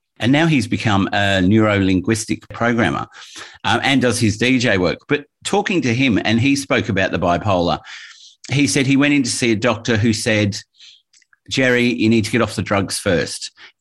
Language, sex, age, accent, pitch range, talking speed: English, male, 50-69, Australian, 105-125 Hz, 190 wpm